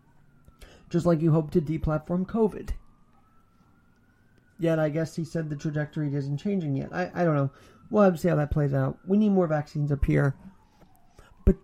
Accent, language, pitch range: American, English, 145-195 Hz